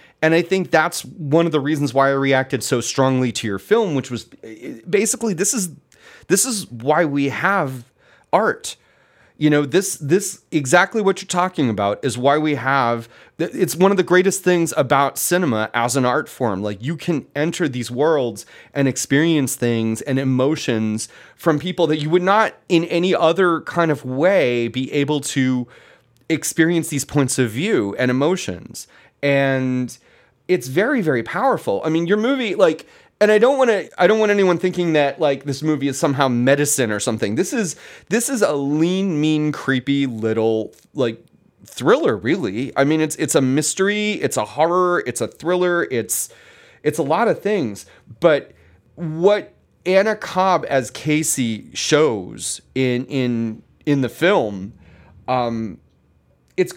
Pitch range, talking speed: 125-175 Hz, 165 wpm